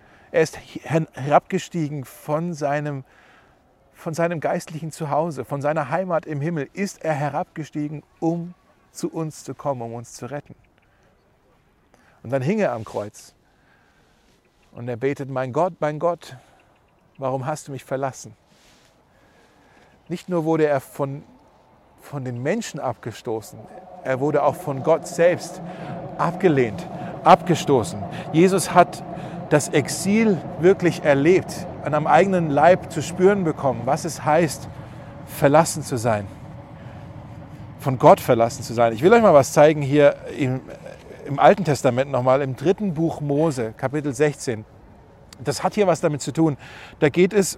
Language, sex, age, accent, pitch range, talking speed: German, male, 40-59, German, 135-170 Hz, 140 wpm